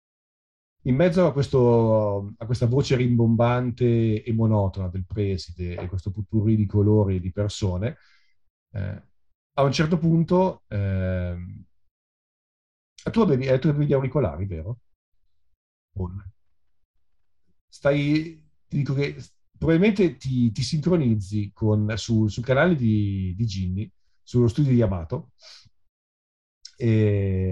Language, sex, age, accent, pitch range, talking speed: Italian, male, 40-59, native, 95-125 Hz, 105 wpm